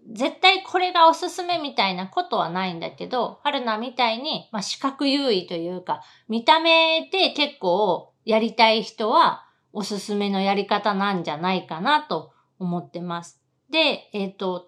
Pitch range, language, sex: 205-330 Hz, Japanese, female